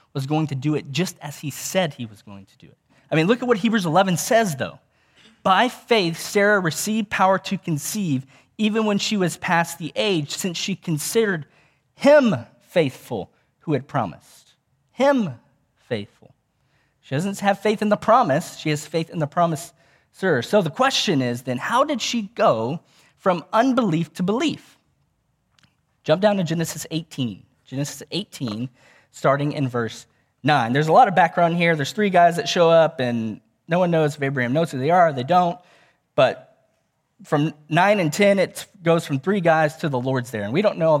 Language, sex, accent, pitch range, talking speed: English, male, American, 135-190 Hz, 190 wpm